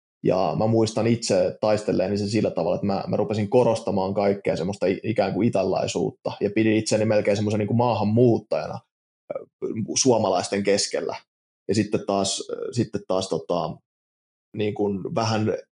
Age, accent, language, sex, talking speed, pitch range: 20-39, native, Finnish, male, 145 wpm, 100-115 Hz